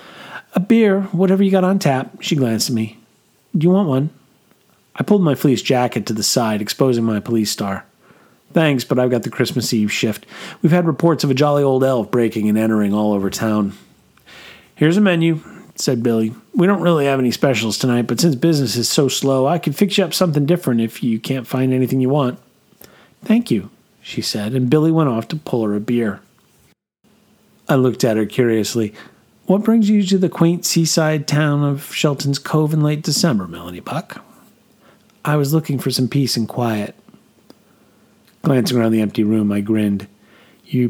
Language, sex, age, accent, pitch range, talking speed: English, male, 40-59, American, 110-160 Hz, 190 wpm